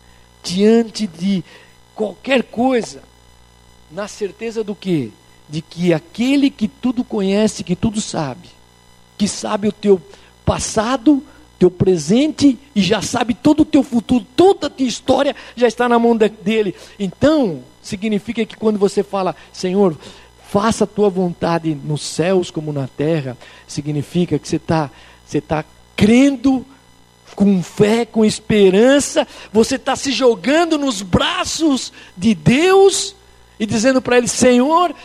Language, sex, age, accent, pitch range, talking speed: Portuguese, male, 50-69, Brazilian, 165-245 Hz, 135 wpm